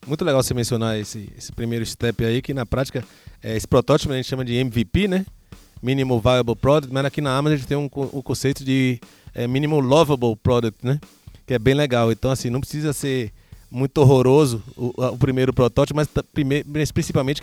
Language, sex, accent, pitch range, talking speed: Portuguese, male, Brazilian, 115-145 Hz, 195 wpm